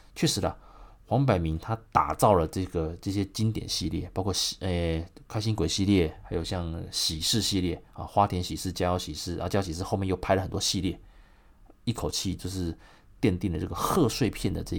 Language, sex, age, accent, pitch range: Chinese, male, 30-49, native, 85-105 Hz